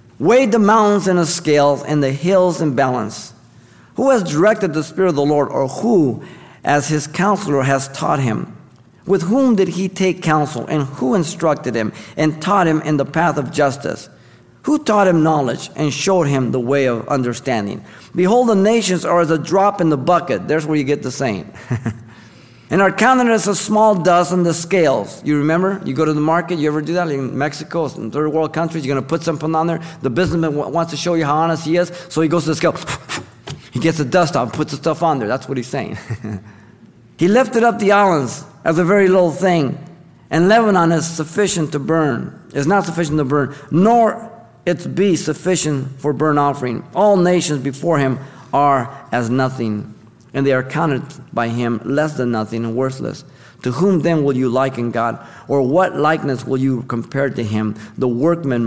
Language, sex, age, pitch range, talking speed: English, male, 50-69, 130-175 Hz, 205 wpm